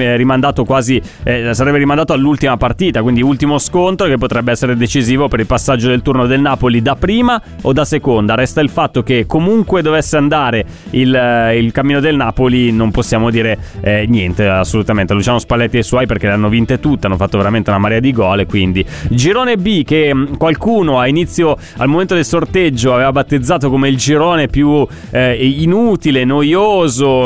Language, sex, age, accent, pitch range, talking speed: Italian, male, 20-39, native, 120-155 Hz, 175 wpm